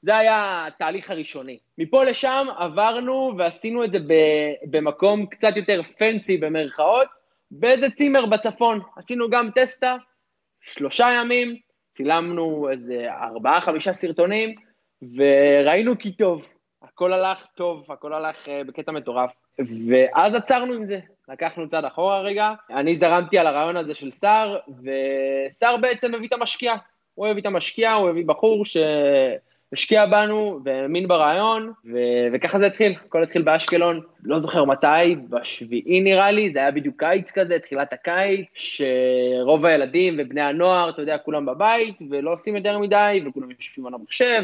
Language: Hebrew